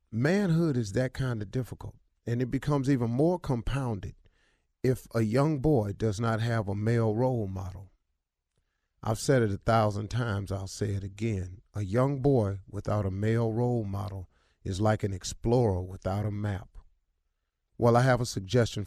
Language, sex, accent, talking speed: English, male, American, 170 wpm